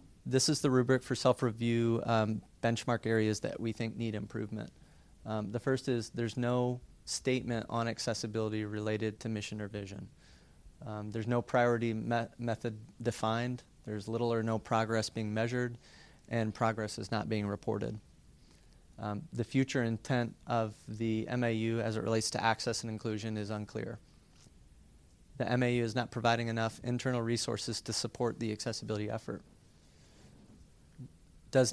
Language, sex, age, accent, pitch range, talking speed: English, male, 30-49, American, 110-120 Hz, 145 wpm